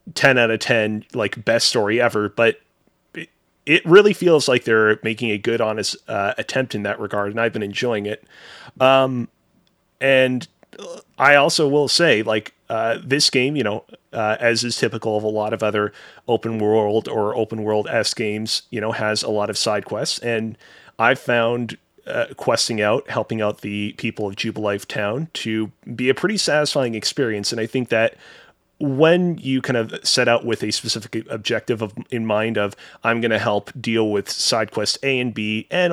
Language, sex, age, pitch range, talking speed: English, male, 30-49, 110-130 Hz, 185 wpm